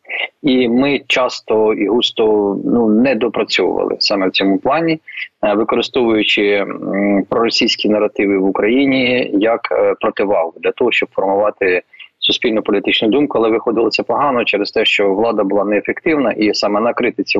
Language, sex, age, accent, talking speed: Ukrainian, male, 20-39, native, 140 wpm